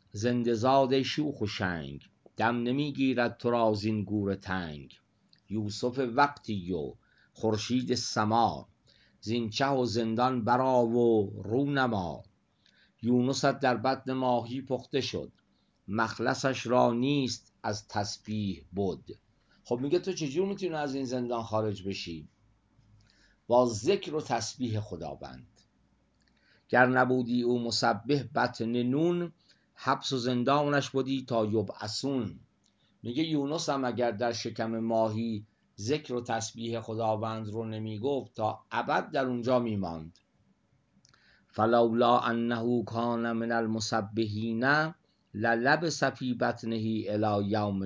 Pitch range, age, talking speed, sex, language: 110-135 Hz, 50-69, 115 wpm, male, Persian